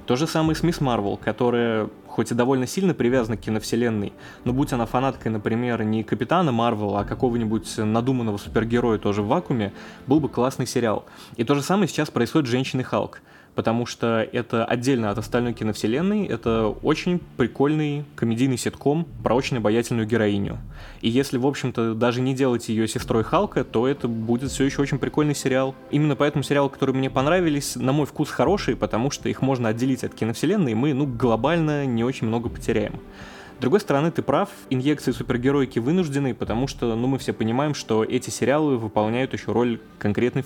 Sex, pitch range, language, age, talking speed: male, 115-140 Hz, Russian, 20-39, 180 wpm